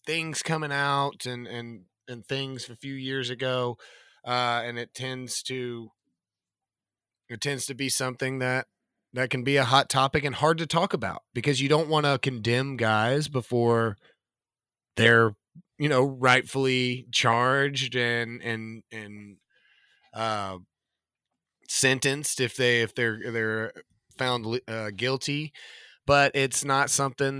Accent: American